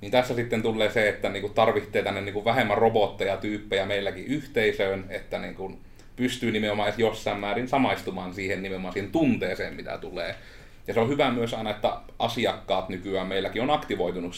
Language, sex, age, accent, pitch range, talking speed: Finnish, male, 30-49, native, 95-115 Hz, 160 wpm